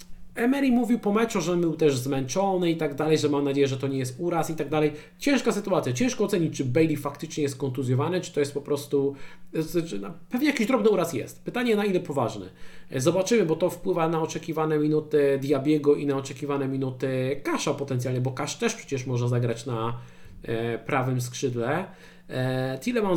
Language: Polish